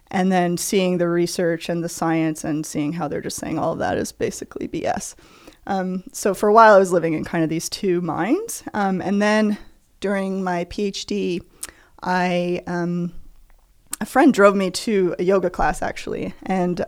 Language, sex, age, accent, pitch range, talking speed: English, female, 20-39, American, 170-200 Hz, 185 wpm